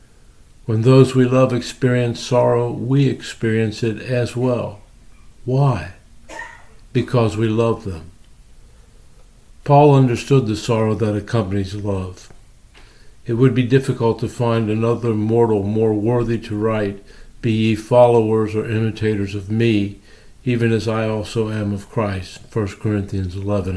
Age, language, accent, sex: 50-69, English, American, male